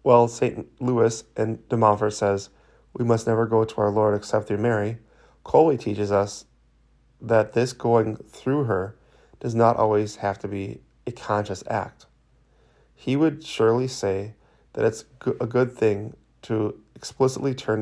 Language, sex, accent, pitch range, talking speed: English, male, American, 105-120 Hz, 155 wpm